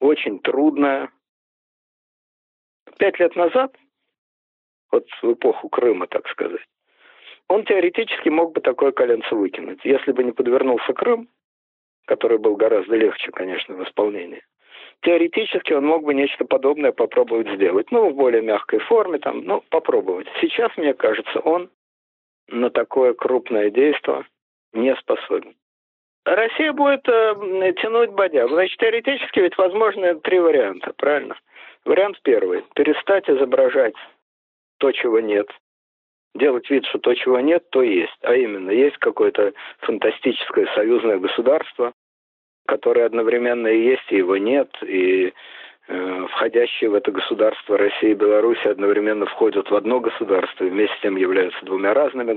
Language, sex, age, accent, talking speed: Russian, male, 50-69, native, 135 wpm